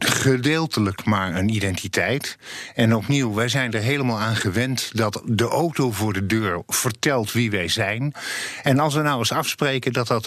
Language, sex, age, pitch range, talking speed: English, male, 50-69, 110-145 Hz, 175 wpm